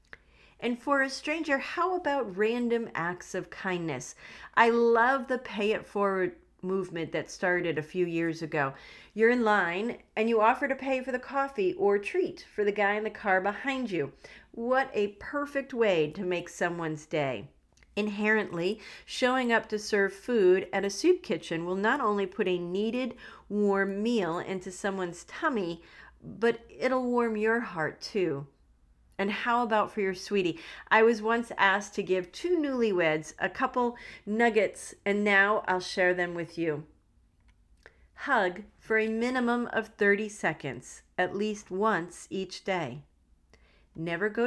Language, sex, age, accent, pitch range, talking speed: English, female, 40-59, American, 170-235 Hz, 160 wpm